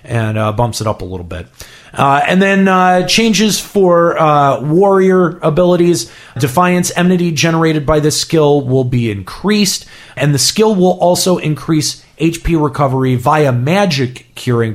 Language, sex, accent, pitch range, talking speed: English, male, American, 125-175 Hz, 150 wpm